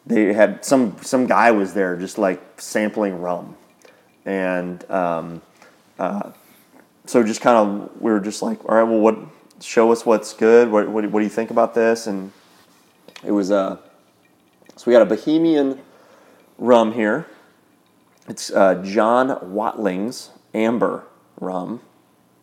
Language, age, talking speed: English, 30-49, 145 wpm